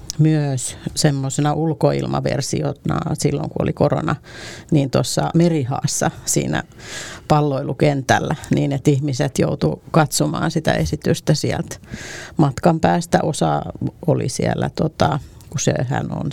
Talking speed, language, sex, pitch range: 105 wpm, Finnish, female, 140-160 Hz